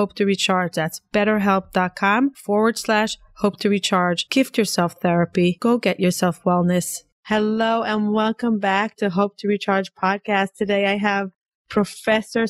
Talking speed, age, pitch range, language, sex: 145 wpm, 30-49, 170-200 Hz, English, female